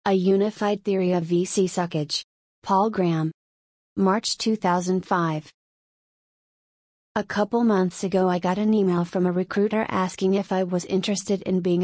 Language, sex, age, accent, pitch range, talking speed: English, female, 30-49, American, 180-200 Hz, 140 wpm